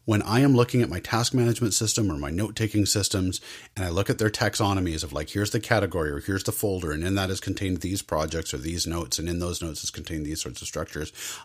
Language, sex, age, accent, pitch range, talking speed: English, male, 40-59, American, 95-115 Hz, 255 wpm